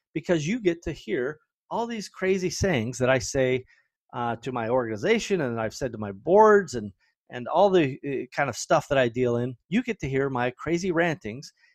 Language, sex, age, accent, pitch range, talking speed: English, male, 30-49, American, 125-195 Hz, 205 wpm